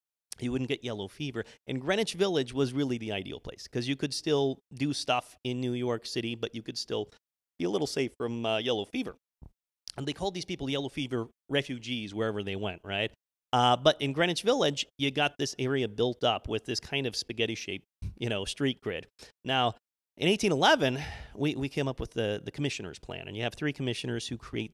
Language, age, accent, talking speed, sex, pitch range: English, 40-59, American, 210 wpm, male, 110-135 Hz